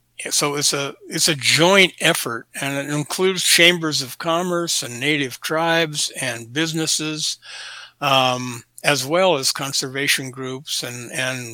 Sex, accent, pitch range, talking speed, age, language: male, American, 125-160 Hz, 135 wpm, 60-79, English